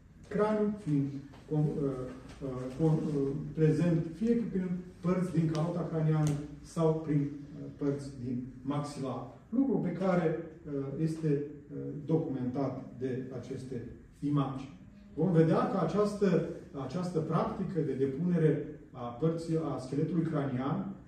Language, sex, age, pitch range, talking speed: Romanian, male, 30-49, 135-165 Hz, 100 wpm